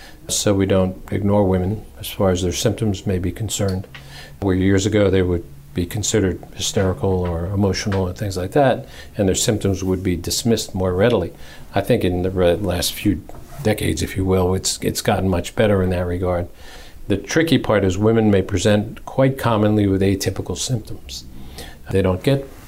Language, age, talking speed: English, 50-69, 180 wpm